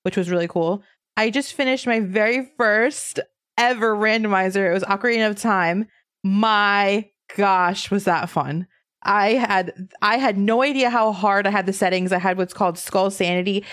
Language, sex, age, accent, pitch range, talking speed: English, female, 20-39, American, 175-220 Hz, 175 wpm